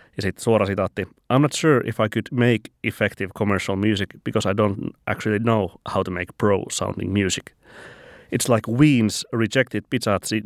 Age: 30-49